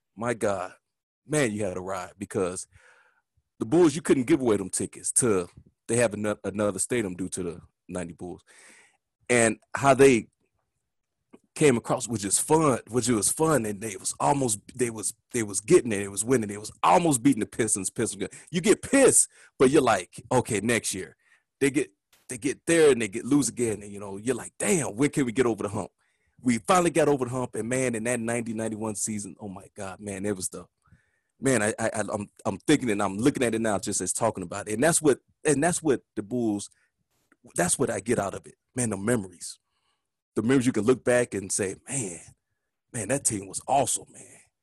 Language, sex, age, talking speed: English, male, 30-49, 215 wpm